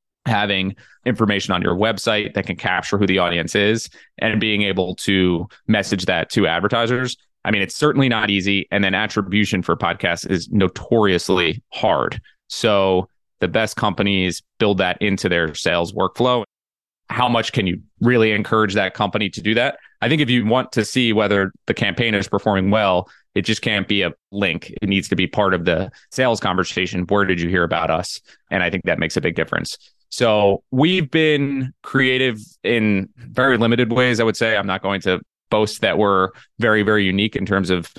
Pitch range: 95-115 Hz